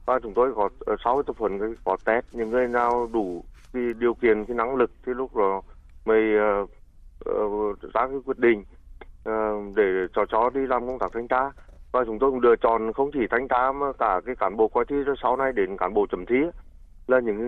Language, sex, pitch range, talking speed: Vietnamese, male, 105-130 Hz, 225 wpm